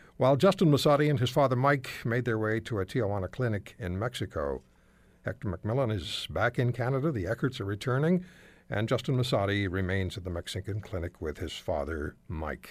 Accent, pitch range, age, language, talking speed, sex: American, 95-135 Hz, 60-79, English, 180 wpm, male